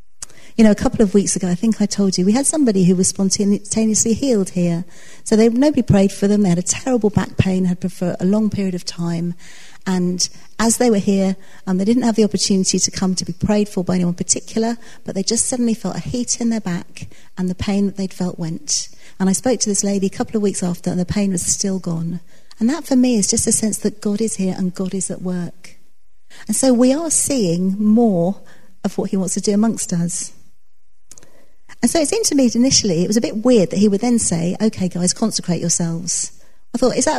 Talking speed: 240 wpm